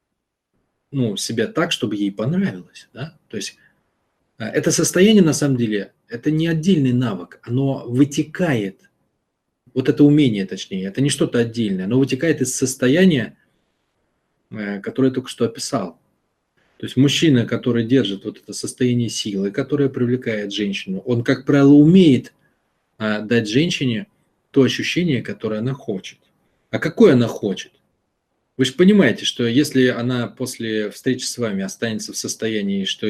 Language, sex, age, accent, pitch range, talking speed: Russian, male, 20-39, native, 110-145 Hz, 140 wpm